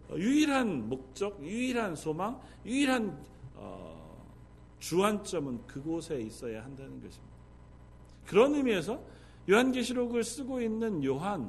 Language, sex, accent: Korean, male, native